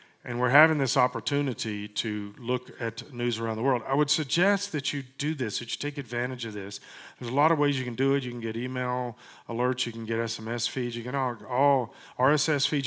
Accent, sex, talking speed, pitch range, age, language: American, male, 240 wpm, 115-135 Hz, 40-59, English